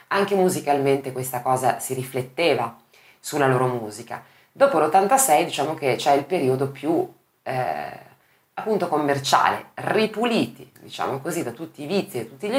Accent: native